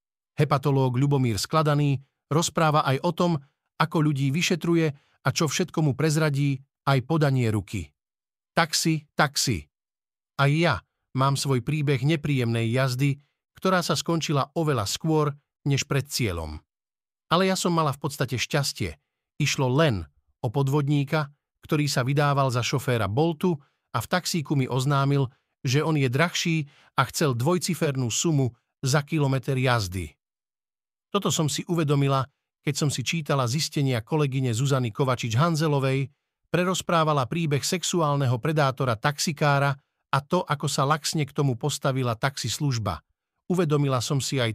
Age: 50-69